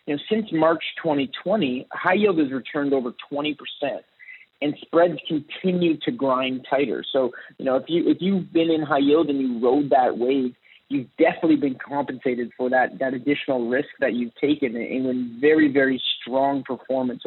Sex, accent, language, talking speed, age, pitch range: male, American, English, 180 wpm, 30-49, 135-165 Hz